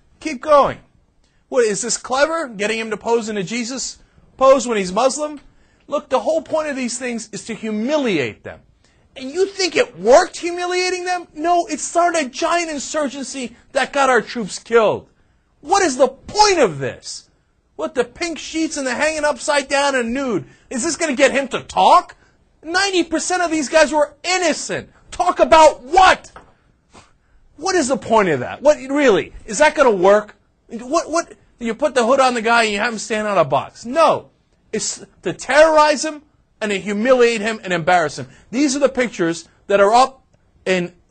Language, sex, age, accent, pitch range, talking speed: English, male, 40-59, American, 225-315 Hz, 190 wpm